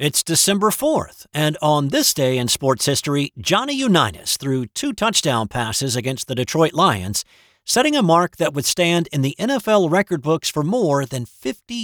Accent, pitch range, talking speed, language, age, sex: American, 120-180 Hz, 175 wpm, English, 50-69, male